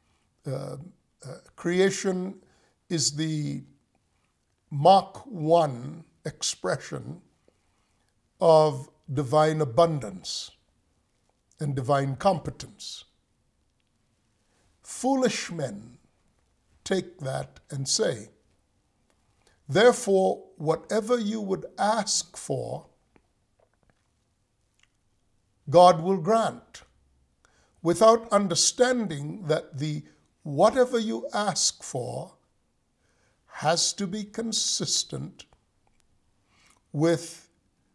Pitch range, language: 135-190 Hz, English